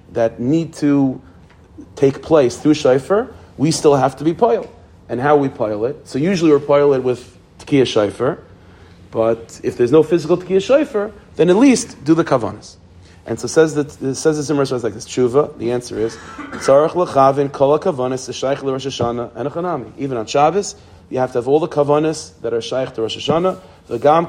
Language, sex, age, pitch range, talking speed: English, male, 40-59, 115-155 Hz, 185 wpm